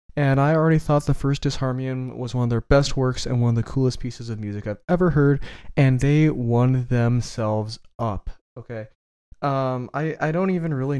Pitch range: 110-135 Hz